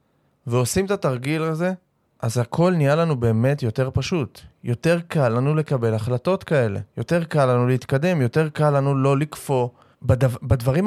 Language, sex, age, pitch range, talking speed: Hebrew, male, 20-39, 125-165 Hz, 155 wpm